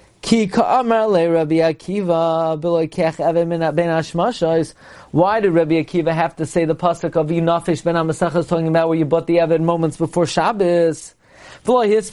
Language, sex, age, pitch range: English, male, 40-59, 160-205 Hz